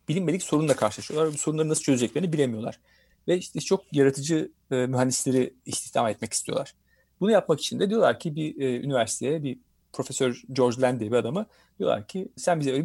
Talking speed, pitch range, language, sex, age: 175 wpm, 130-185 Hz, Turkish, male, 40-59